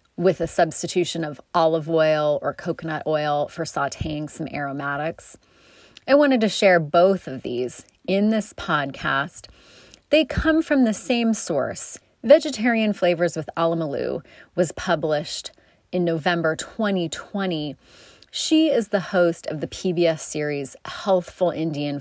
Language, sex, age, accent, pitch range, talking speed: English, female, 30-49, American, 155-210 Hz, 130 wpm